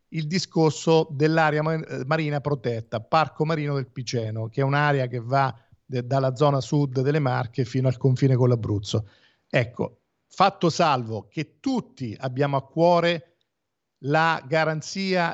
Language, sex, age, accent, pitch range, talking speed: Italian, male, 50-69, native, 130-160 Hz, 135 wpm